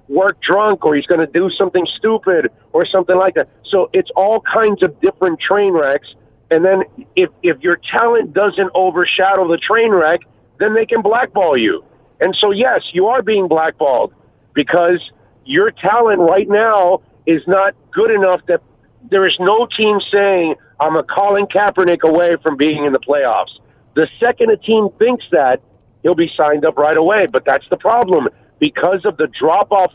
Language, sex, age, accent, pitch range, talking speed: English, male, 50-69, American, 150-205 Hz, 180 wpm